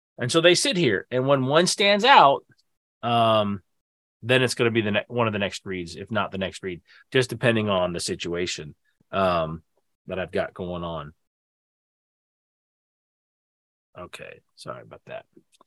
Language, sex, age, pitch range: English, male, 30-49, 105-140 Hz